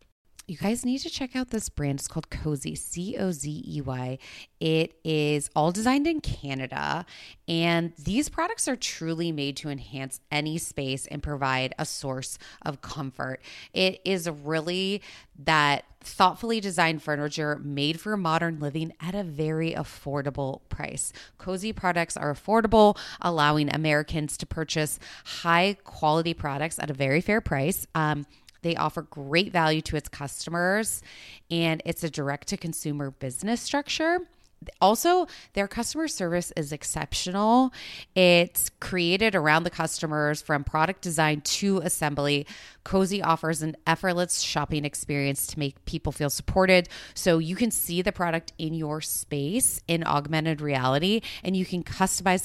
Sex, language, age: female, English, 20-39